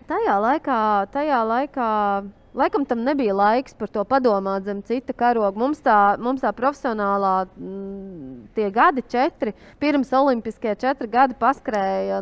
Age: 20-39